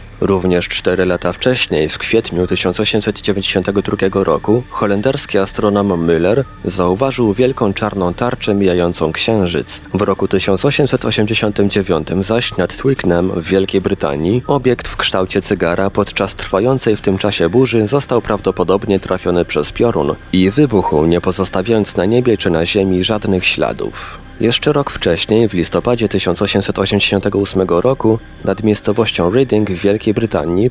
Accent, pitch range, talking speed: native, 95-115 Hz, 125 wpm